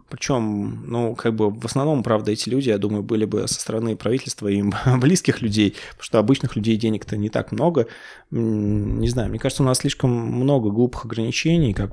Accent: native